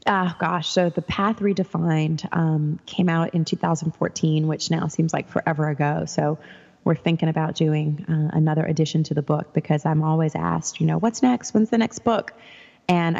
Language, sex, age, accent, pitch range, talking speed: English, female, 20-39, American, 155-170 Hz, 185 wpm